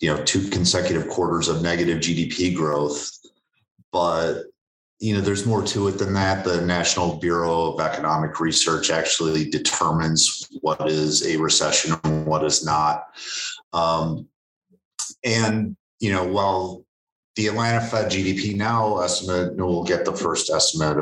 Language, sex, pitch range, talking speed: English, male, 85-100 Hz, 145 wpm